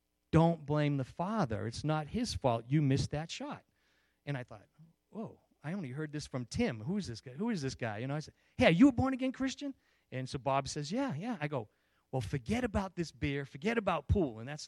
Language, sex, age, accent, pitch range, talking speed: English, male, 40-59, American, 130-185 Hz, 240 wpm